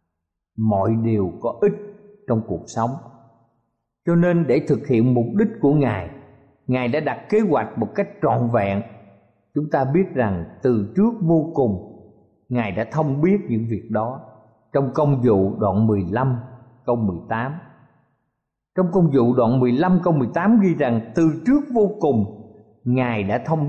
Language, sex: Vietnamese, male